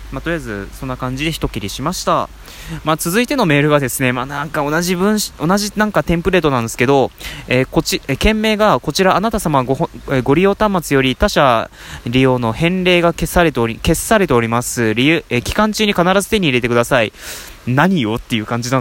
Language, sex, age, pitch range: Japanese, male, 20-39, 120-170 Hz